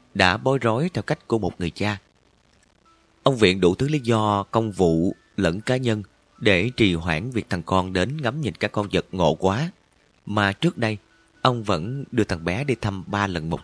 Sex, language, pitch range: male, Vietnamese, 90-120 Hz